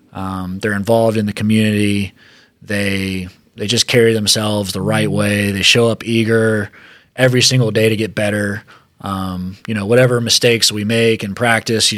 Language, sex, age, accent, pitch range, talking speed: English, male, 20-39, American, 100-120 Hz, 170 wpm